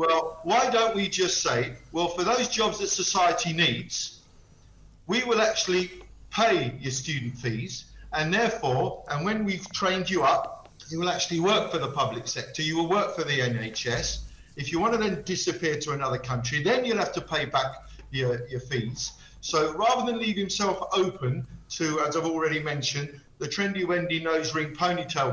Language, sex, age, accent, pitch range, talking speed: English, male, 50-69, British, 135-180 Hz, 180 wpm